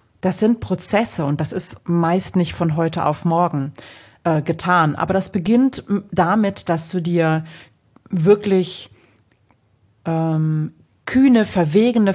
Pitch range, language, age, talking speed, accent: 135-185 Hz, German, 40-59, 125 wpm, German